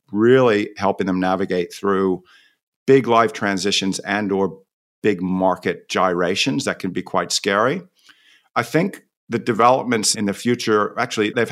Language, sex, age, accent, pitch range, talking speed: English, male, 50-69, American, 95-110 Hz, 140 wpm